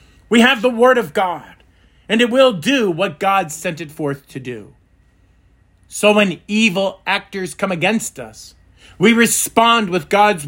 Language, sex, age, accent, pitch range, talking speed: English, male, 40-59, American, 145-210 Hz, 160 wpm